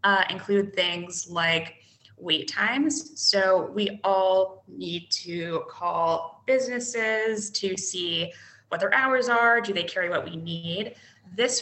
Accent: American